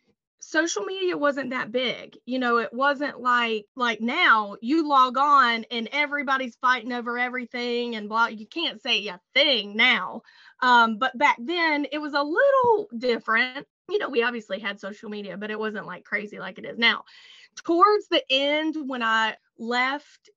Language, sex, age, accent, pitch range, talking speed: English, female, 20-39, American, 220-270 Hz, 175 wpm